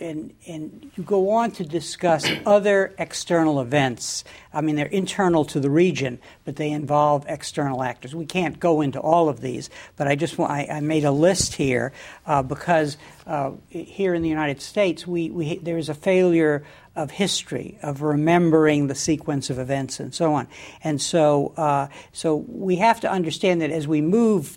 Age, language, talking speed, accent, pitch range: 60-79, English, 185 wpm, American, 145-175 Hz